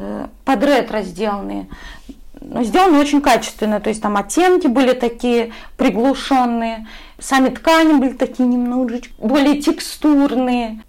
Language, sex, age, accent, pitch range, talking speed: Russian, female, 20-39, native, 225-285 Hz, 115 wpm